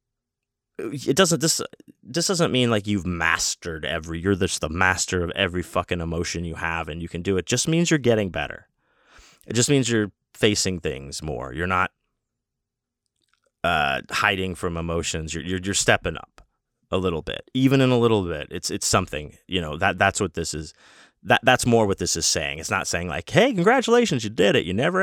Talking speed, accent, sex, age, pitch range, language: 205 wpm, American, male, 30-49, 85-110 Hz, English